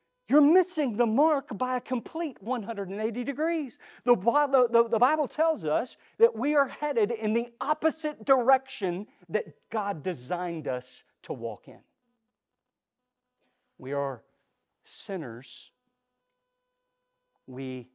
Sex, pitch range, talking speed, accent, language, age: male, 165-250 Hz, 105 wpm, American, English, 40-59